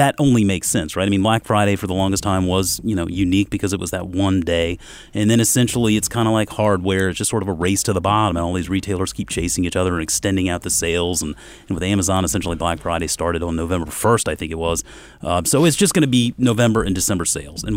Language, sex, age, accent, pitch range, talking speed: English, male, 30-49, American, 85-100 Hz, 270 wpm